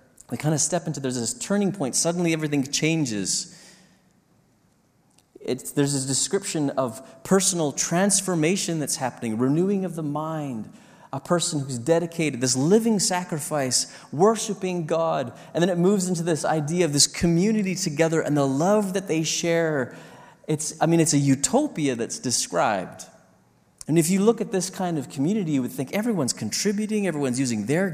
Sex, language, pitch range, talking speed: male, English, 130-180 Hz, 165 wpm